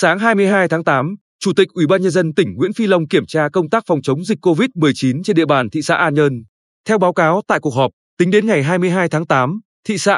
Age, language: 20-39, Vietnamese